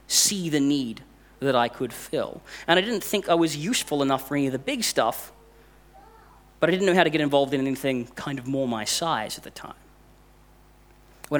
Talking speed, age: 210 wpm, 30-49